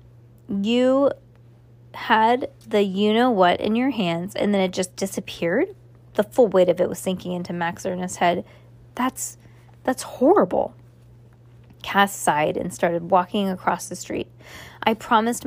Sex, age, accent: female, 20-39, American